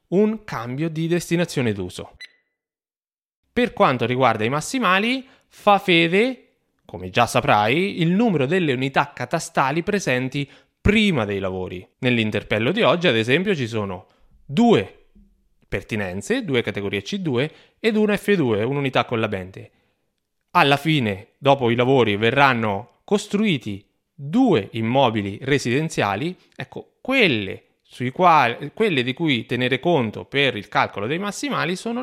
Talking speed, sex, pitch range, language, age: 125 wpm, male, 115-180 Hz, Italian, 20-39